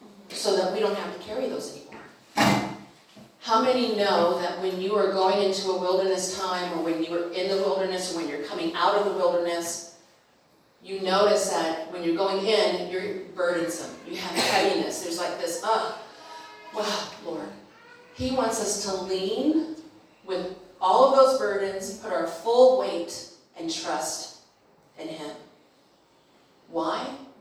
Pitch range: 175-215 Hz